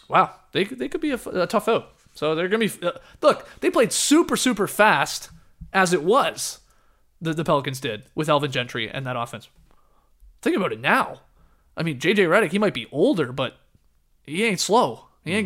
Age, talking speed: 20-39, 200 wpm